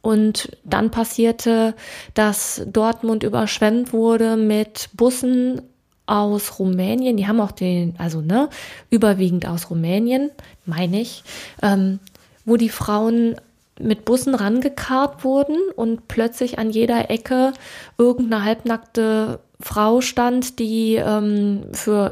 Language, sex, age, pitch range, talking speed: German, female, 20-39, 190-230 Hz, 115 wpm